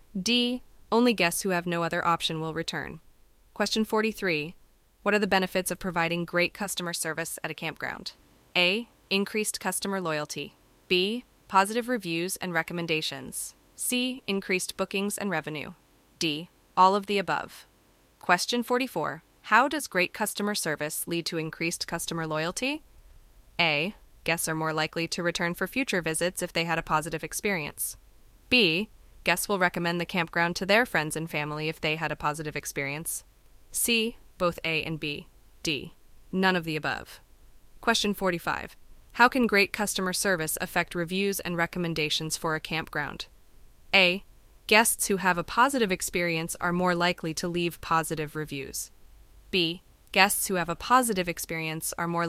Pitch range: 160-195 Hz